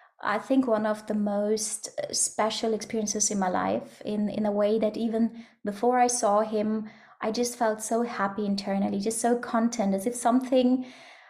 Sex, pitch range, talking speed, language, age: female, 205-245 Hz, 175 wpm, English, 20-39